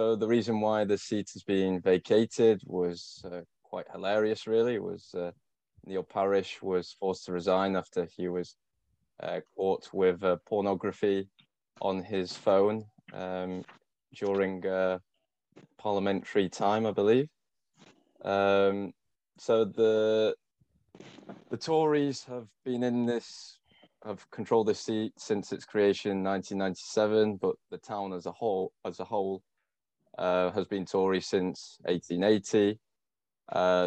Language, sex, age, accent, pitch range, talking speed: English, male, 20-39, British, 90-105 Hz, 130 wpm